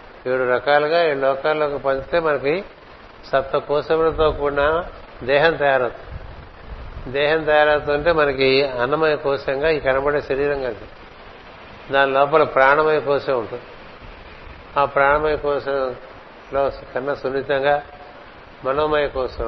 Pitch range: 135-150 Hz